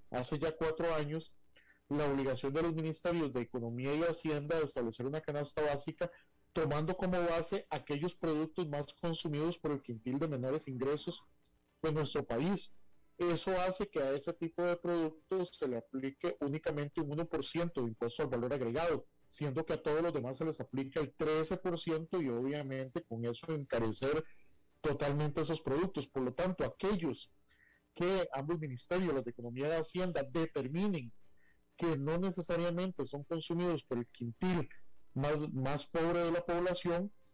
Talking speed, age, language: 160 wpm, 40-59, Spanish